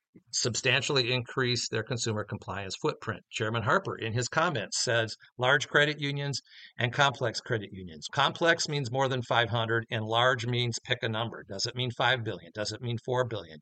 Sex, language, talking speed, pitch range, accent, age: male, English, 175 wpm, 110-130 Hz, American, 50-69